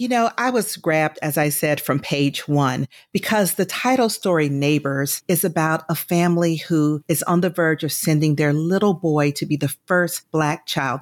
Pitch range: 155-205 Hz